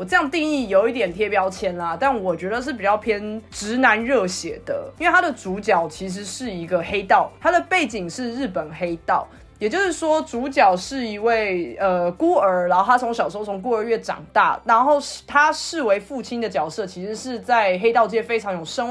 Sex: female